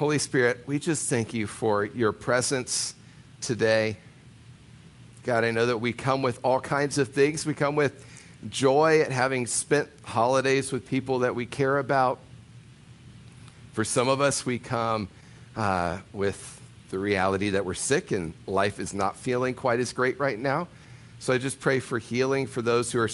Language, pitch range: English, 110-135 Hz